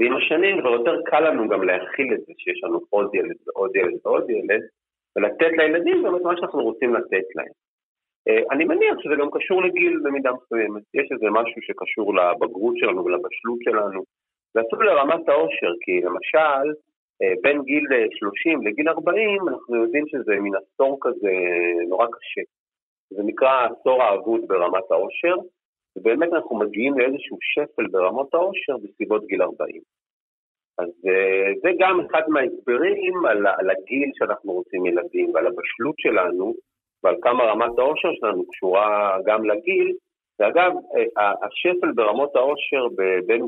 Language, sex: Hebrew, male